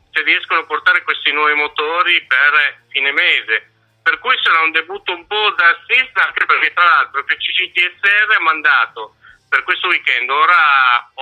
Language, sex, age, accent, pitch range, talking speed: Italian, male, 50-69, native, 155-190 Hz, 165 wpm